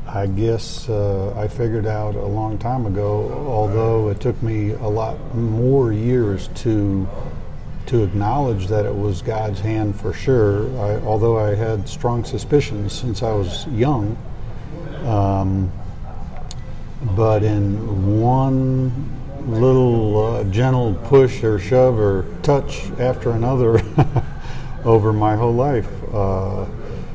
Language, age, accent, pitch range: English, 50-69, American, 100-120 Hz